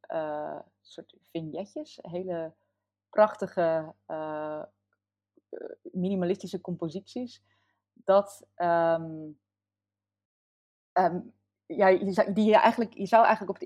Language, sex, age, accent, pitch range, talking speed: Dutch, female, 20-39, Dutch, 145-185 Hz, 85 wpm